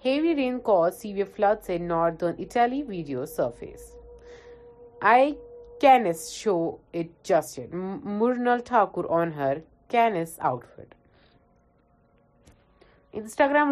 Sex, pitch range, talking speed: female, 170-235 Hz, 100 wpm